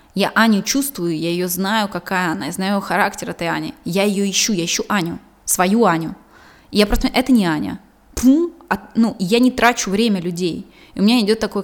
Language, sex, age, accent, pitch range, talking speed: Russian, female, 20-39, native, 185-225 Hz, 200 wpm